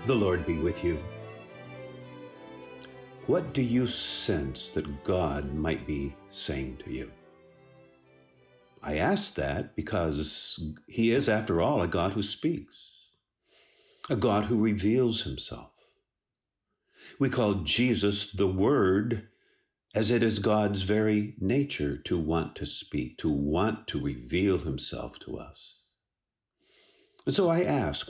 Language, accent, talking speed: English, American, 125 wpm